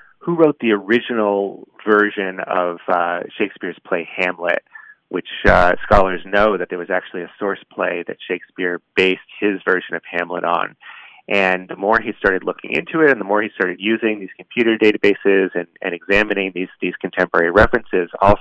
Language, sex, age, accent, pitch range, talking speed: English, male, 30-49, American, 90-105 Hz, 175 wpm